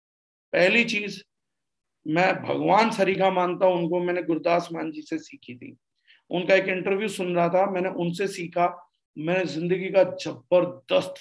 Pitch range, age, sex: 175-210 Hz, 40-59, male